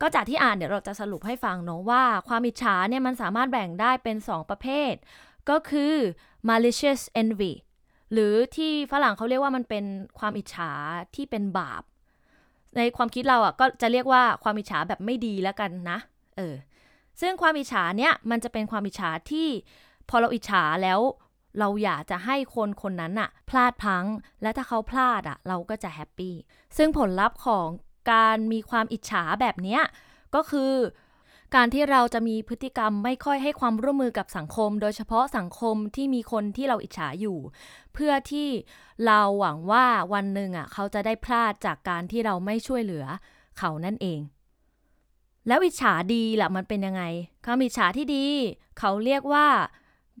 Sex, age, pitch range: female, 20-39, 200-255 Hz